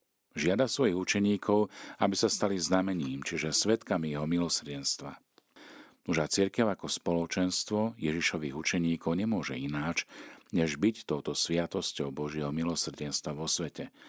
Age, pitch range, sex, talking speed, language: 50-69, 80-95 Hz, male, 115 wpm, Slovak